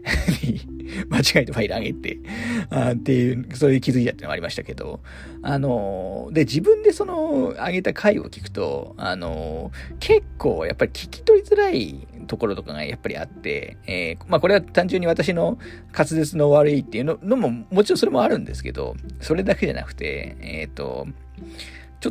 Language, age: Japanese, 40-59